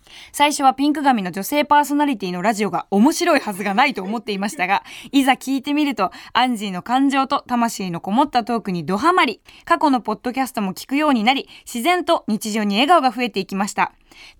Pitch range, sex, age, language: 225-290 Hz, female, 20-39, Japanese